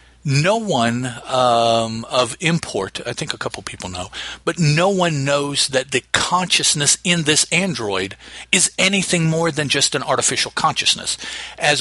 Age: 50-69